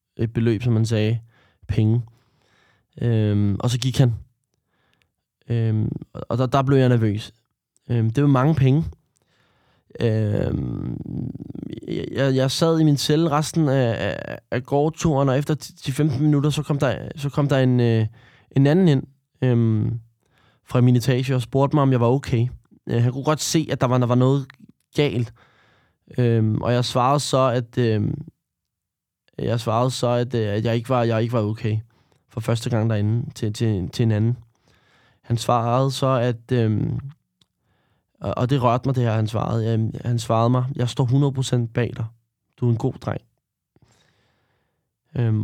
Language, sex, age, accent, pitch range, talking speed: Danish, male, 20-39, native, 115-140 Hz, 170 wpm